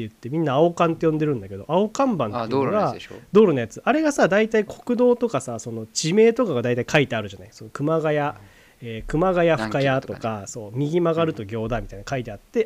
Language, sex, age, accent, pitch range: Japanese, male, 30-49, native, 120-195 Hz